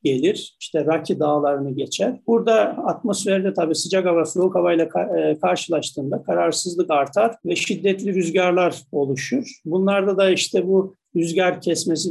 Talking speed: 125 wpm